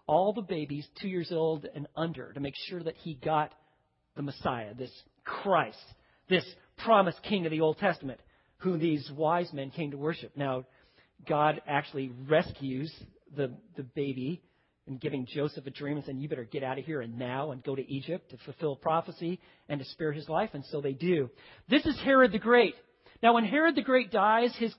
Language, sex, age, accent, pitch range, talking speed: English, male, 40-59, American, 150-215 Hz, 200 wpm